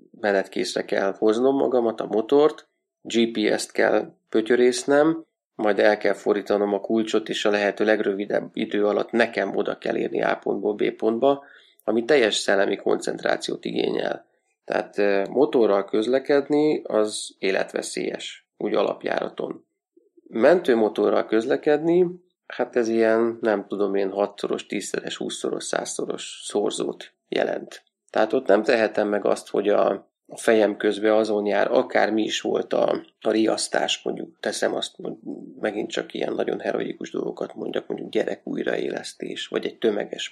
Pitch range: 105-130 Hz